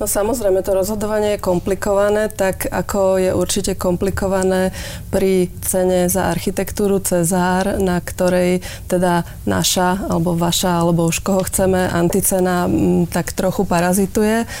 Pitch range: 175-195 Hz